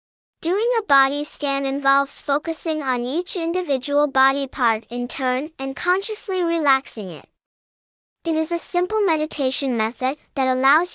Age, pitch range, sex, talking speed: 10-29, 270-330 Hz, male, 135 wpm